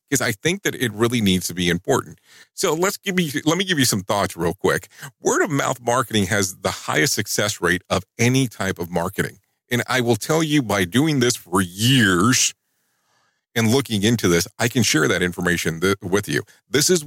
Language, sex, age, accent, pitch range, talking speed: English, male, 40-59, American, 90-120 Hz, 210 wpm